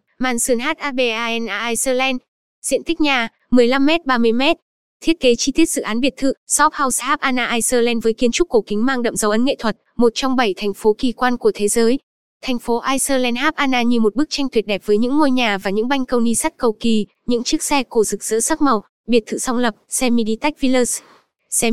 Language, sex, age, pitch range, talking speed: Vietnamese, female, 10-29, 230-270 Hz, 225 wpm